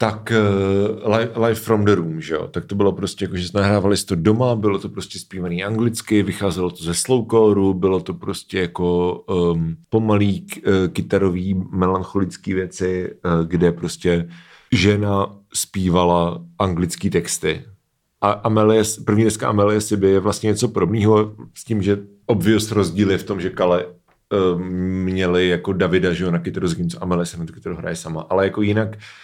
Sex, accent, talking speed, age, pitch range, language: male, native, 165 wpm, 40-59, 95-120 Hz, Czech